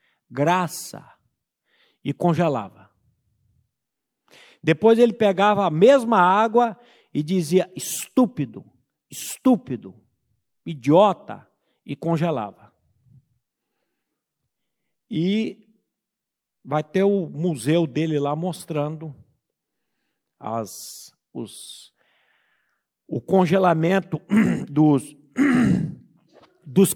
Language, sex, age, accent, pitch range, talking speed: Portuguese, male, 50-69, Brazilian, 145-215 Hz, 60 wpm